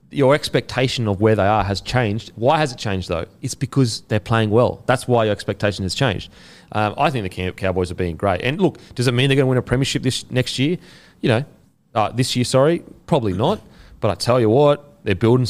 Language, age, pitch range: English, 30-49, 105-135 Hz